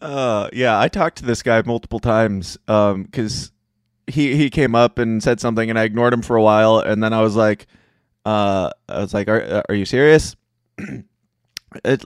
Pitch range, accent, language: 110-135 Hz, American, English